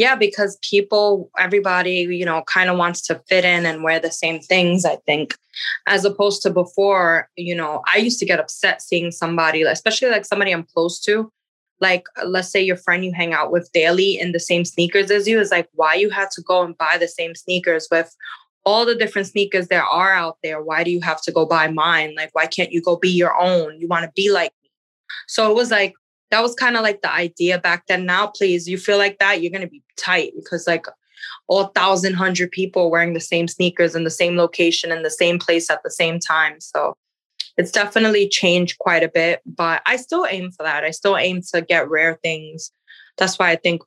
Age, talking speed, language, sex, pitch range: 20-39, 230 wpm, English, female, 165-195 Hz